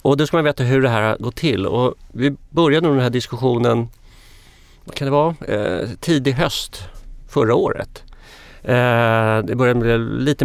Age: 40-59